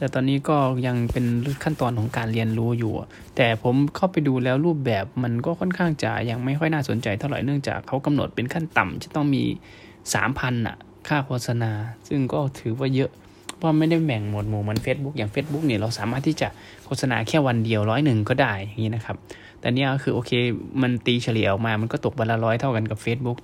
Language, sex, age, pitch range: Thai, male, 20-39, 110-140 Hz